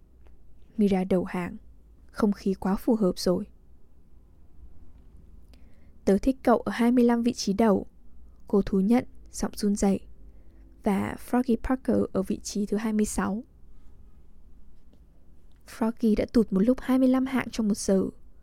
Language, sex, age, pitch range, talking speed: English, female, 10-29, 190-230 Hz, 130 wpm